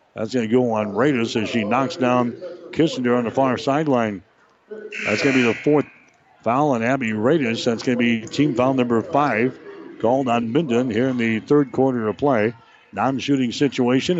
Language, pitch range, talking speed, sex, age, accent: English, 120-140 Hz, 190 wpm, male, 60-79, American